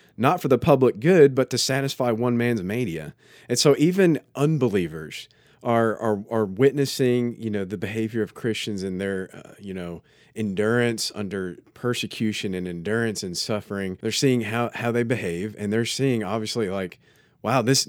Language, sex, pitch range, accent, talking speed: English, male, 90-120 Hz, American, 170 wpm